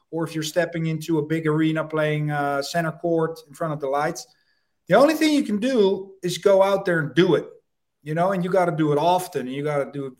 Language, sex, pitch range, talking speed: English, male, 150-190 Hz, 265 wpm